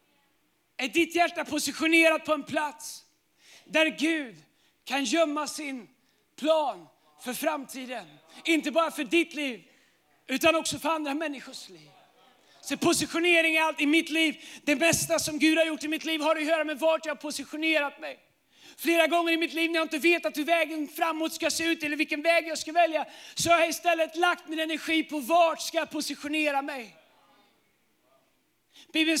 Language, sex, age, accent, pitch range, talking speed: Swedish, male, 30-49, native, 305-330 Hz, 175 wpm